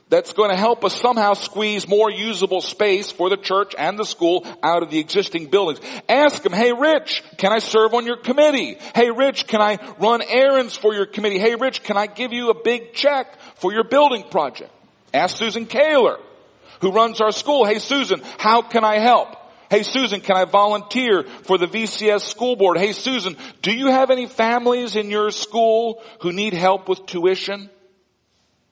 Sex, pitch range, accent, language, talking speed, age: male, 160-235 Hz, American, English, 190 wpm, 50-69